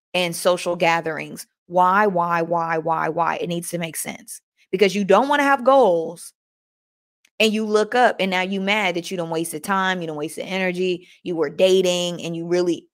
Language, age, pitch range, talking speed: English, 20-39, 175-235 Hz, 210 wpm